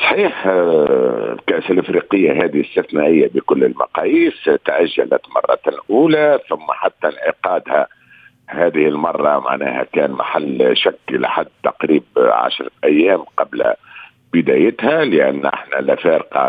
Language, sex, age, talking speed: Arabic, male, 50-69, 100 wpm